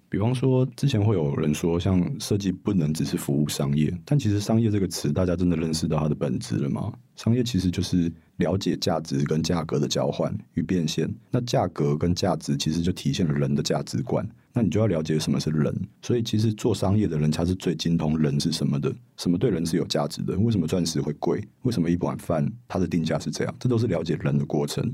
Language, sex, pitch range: Chinese, male, 75-100 Hz